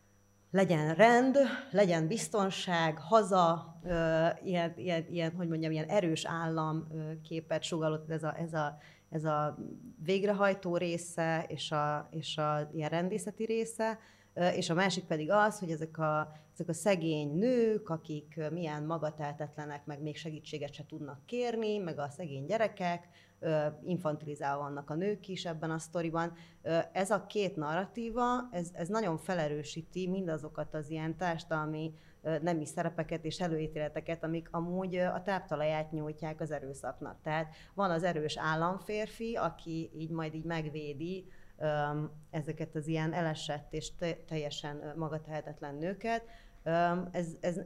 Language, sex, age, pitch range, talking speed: Hungarian, female, 30-49, 155-180 Hz, 135 wpm